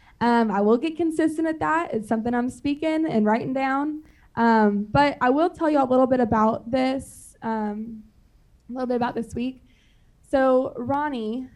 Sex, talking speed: female, 170 wpm